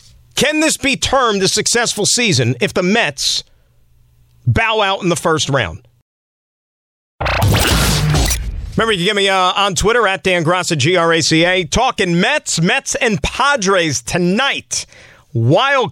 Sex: male